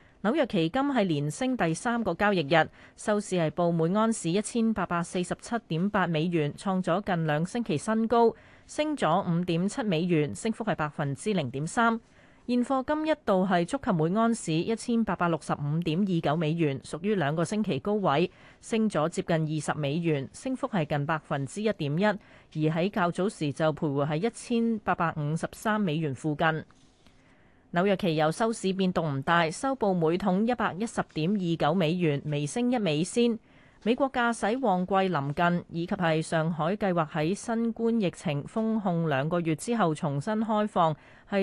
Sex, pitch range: female, 155-215 Hz